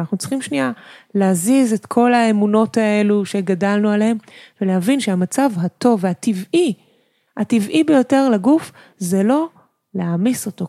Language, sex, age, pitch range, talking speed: Hebrew, female, 20-39, 180-240 Hz, 120 wpm